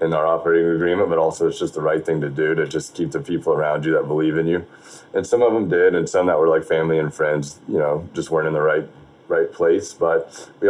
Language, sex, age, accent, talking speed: English, male, 30-49, American, 270 wpm